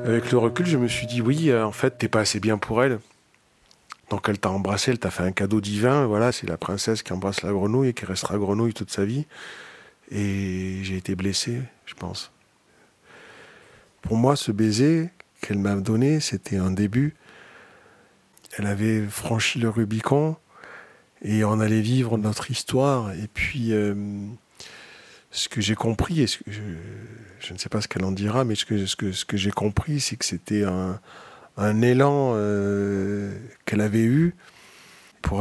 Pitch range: 100-120 Hz